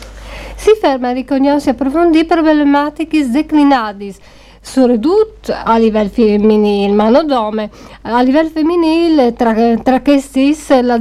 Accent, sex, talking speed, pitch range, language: native, female, 115 wpm, 220-270 Hz, Italian